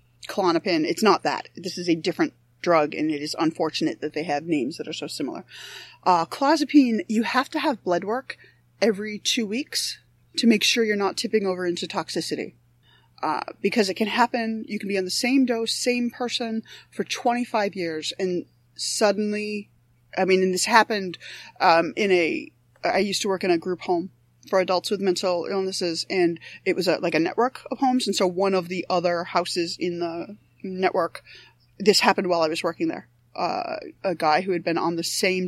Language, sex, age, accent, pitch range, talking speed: English, female, 20-39, American, 155-210 Hz, 195 wpm